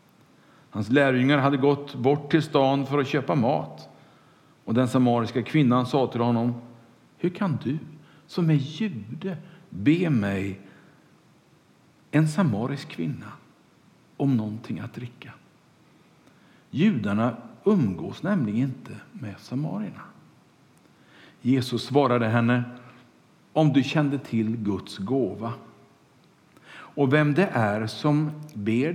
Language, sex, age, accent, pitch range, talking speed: Swedish, male, 60-79, Norwegian, 120-155 Hz, 110 wpm